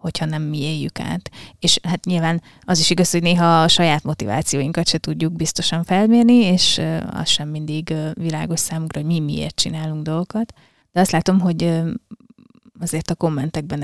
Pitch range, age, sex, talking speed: 155-180 Hz, 20-39, female, 165 wpm